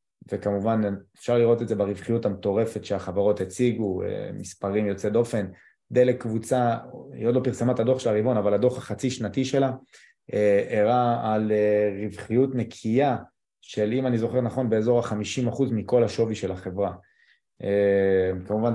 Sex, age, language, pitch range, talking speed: male, 20-39, Hebrew, 100-120 Hz, 150 wpm